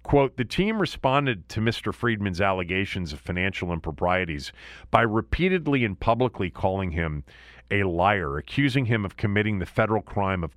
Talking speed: 155 wpm